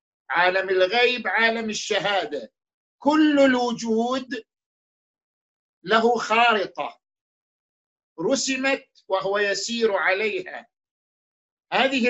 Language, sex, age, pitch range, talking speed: Arabic, male, 50-69, 205-235 Hz, 65 wpm